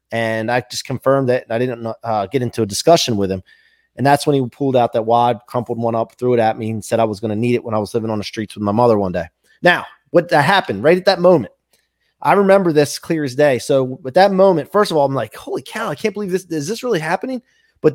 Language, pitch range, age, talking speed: English, 125-190 Hz, 30-49, 280 wpm